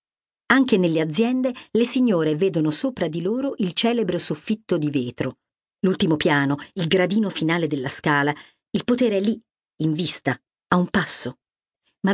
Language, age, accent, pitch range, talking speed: English, 50-69, Italian, 155-220 Hz, 155 wpm